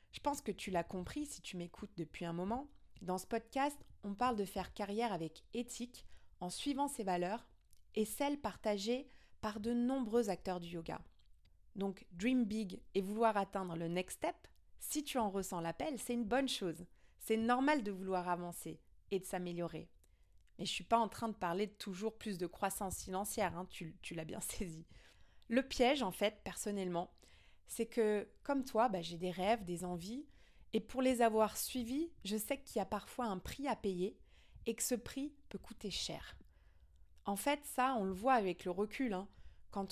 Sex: female